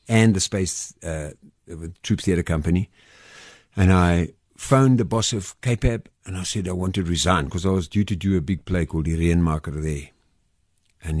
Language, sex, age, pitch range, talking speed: English, male, 60-79, 80-105 Hz, 190 wpm